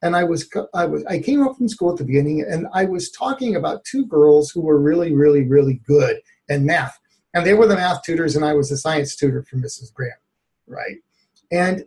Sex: male